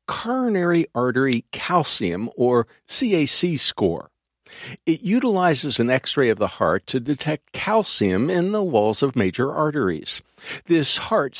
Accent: American